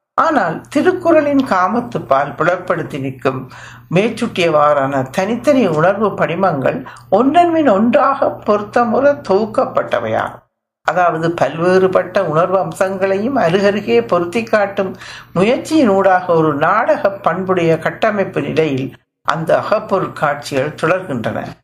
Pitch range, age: 165-215 Hz, 60-79